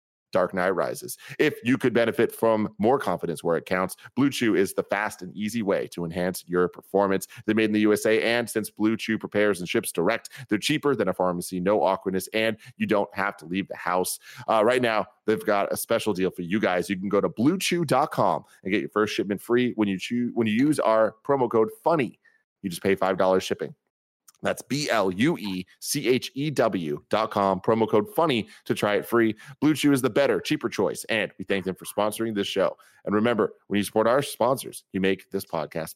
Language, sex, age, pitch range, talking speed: English, male, 30-49, 95-130 Hz, 225 wpm